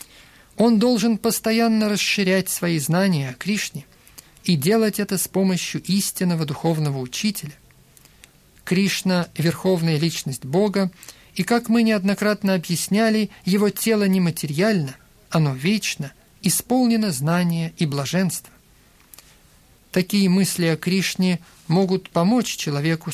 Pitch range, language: 160-200 Hz, Russian